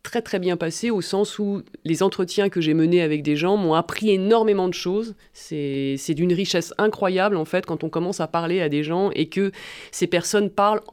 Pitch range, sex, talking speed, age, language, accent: 160-205 Hz, female, 220 wpm, 30-49, French, French